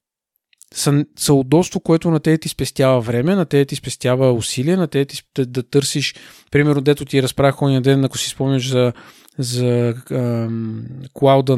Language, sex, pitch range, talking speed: Bulgarian, male, 125-145 Hz, 155 wpm